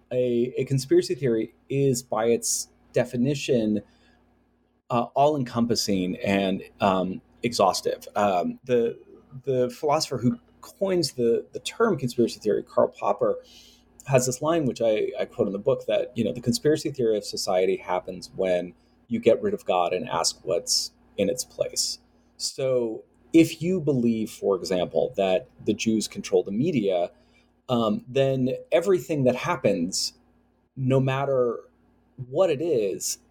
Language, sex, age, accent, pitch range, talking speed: English, male, 30-49, American, 110-145 Hz, 140 wpm